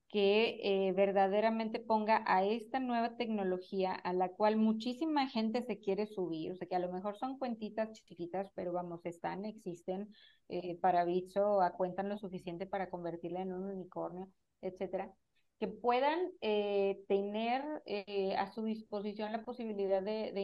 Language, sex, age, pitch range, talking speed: Spanish, female, 30-49, 190-225 Hz, 155 wpm